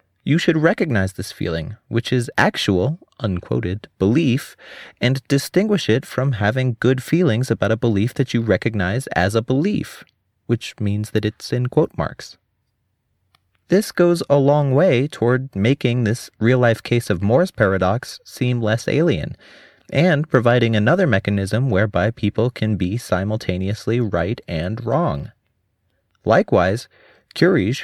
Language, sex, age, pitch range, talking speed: English, male, 30-49, 95-125 Hz, 135 wpm